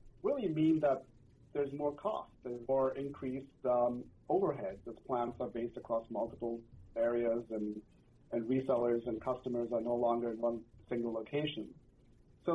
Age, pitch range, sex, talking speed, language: 40-59, 120-140 Hz, male, 150 wpm, English